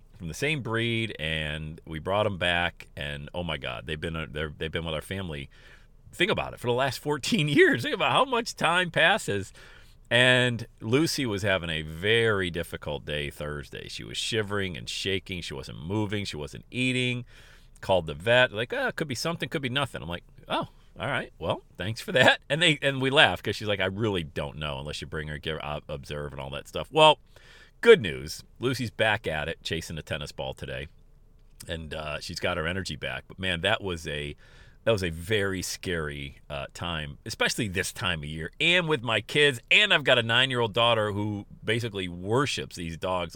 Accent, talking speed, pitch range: American, 205 wpm, 80-120 Hz